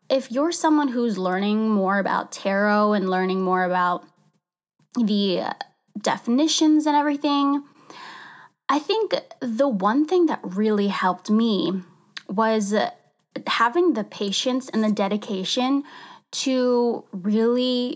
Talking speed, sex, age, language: 120 wpm, female, 10-29, English